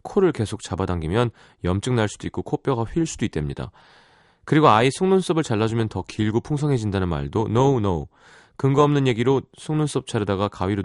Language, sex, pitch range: Korean, male, 90-135 Hz